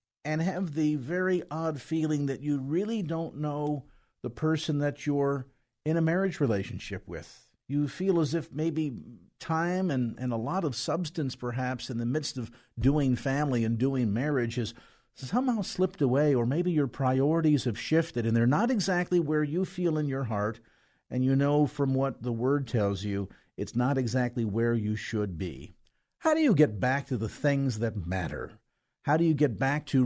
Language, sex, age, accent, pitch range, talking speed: English, male, 50-69, American, 115-150 Hz, 190 wpm